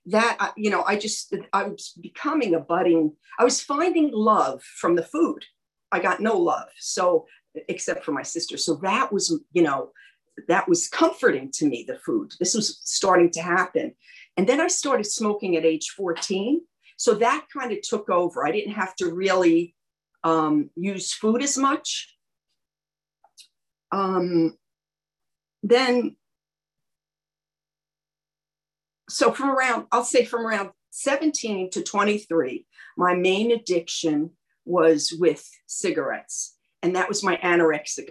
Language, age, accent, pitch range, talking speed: English, 50-69, American, 165-250 Hz, 140 wpm